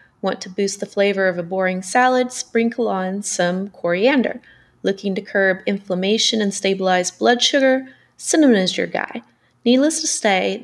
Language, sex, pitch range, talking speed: English, female, 190-240 Hz, 160 wpm